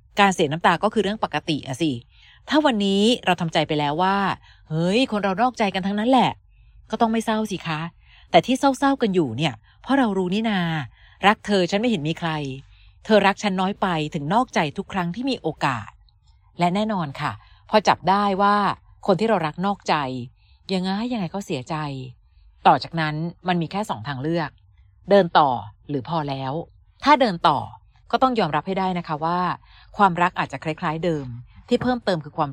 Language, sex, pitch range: Thai, female, 145-200 Hz